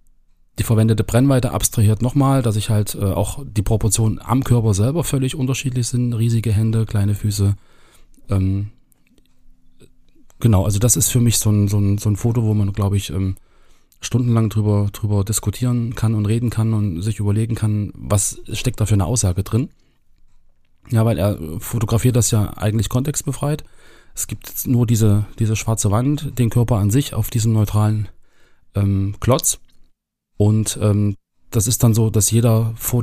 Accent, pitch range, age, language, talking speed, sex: German, 100-115 Hz, 30-49, German, 165 wpm, male